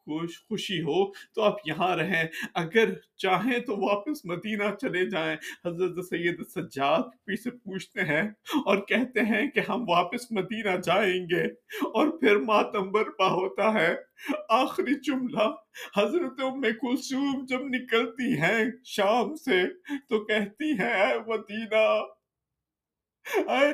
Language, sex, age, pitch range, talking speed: Urdu, male, 50-69, 205-285 Hz, 120 wpm